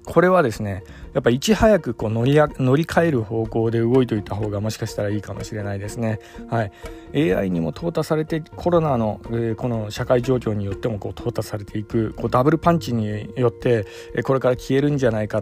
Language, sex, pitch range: Japanese, male, 110-145 Hz